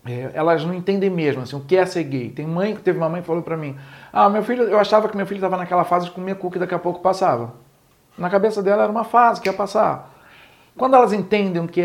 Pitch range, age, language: 150-195 Hz, 40-59, Portuguese